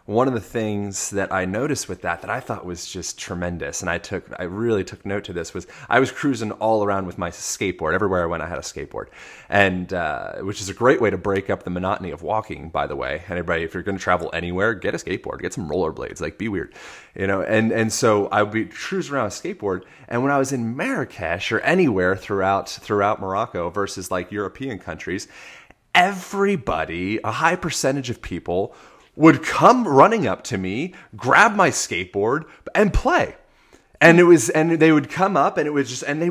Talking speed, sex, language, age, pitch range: 220 wpm, male, English, 30-49, 100-150 Hz